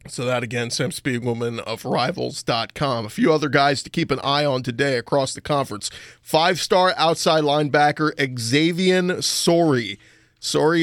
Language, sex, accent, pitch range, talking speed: English, male, American, 125-160 Hz, 145 wpm